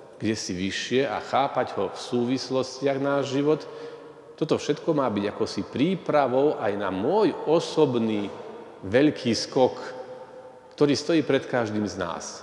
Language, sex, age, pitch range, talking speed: Slovak, male, 40-59, 115-165 Hz, 140 wpm